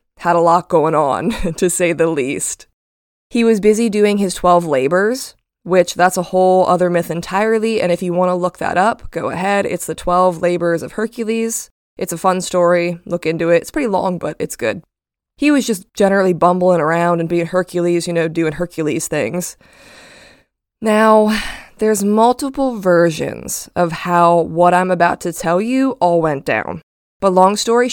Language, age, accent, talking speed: English, 20-39, American, 180 wpm